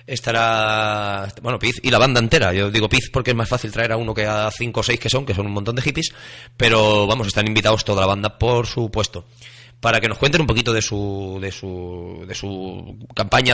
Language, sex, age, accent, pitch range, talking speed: Spanish, male, 30-49, Spanish, 105-135 Hz, 230 wpm